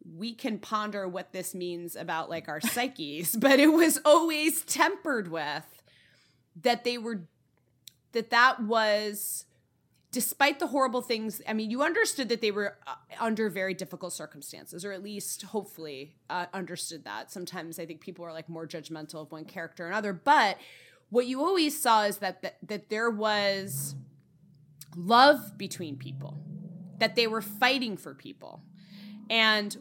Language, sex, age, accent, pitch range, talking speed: English, female, 20-39, American, 175-245 Hz, 155 wpm